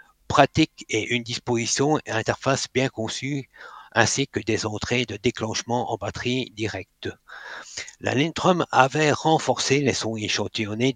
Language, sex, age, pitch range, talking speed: French, male, 60-79, 110-135 Hz, 130 wpm